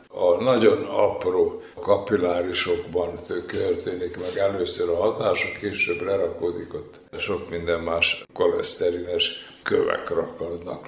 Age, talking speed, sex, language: 60-79, 100 wpm, male, Hungarian